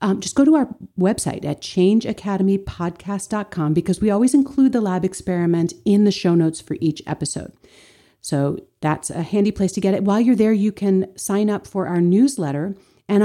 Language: English